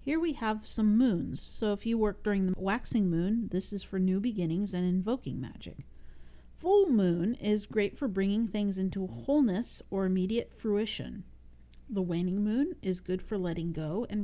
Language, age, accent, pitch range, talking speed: English, 50-69, American, 165-220 Hz, 175 wpm